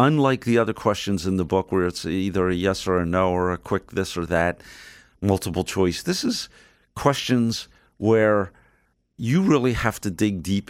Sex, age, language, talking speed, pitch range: male, 50-69, English, 185 wpm, 90-115 Hz